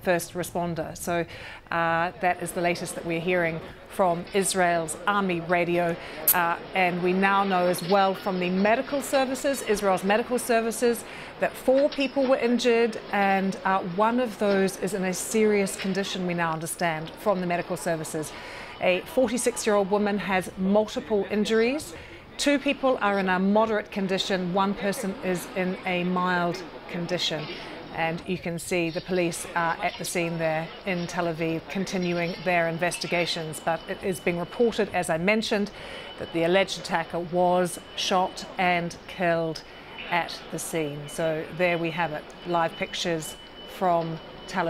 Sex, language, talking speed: female, English, 155 wpm